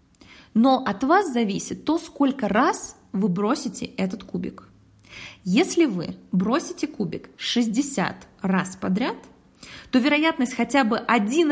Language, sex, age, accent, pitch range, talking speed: Russian, female, 20-39, native, 195-265 Hz, 120 wpm